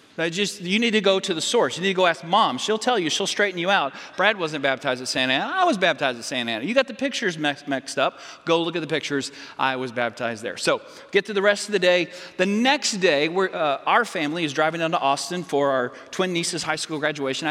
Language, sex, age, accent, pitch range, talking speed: English, male, 40-59, American, 160-220 Hz, 250 wpm